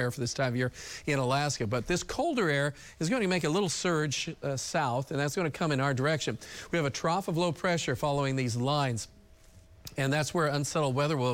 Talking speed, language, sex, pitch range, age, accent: 235 wpm, English, male, 130-170 Hz, 40-59, American